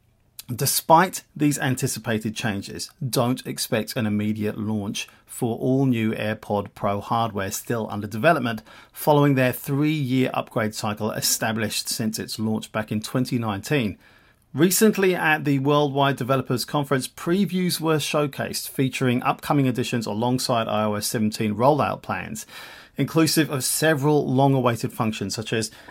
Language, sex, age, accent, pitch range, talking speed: English, male, 40-59, British, 110-140 Hz, 125 wpm